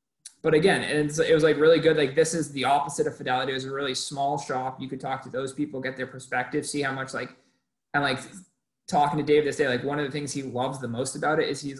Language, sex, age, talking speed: English, male, 20-39, 275 wpm